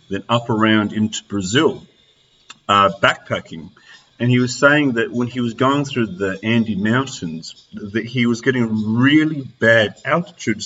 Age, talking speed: 40-59, 150 wpm